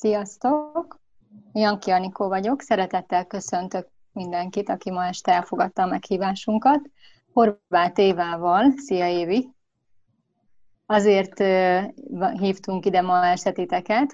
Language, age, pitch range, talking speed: Hungarian, 30-49, 180-220 Hz, 95 wpm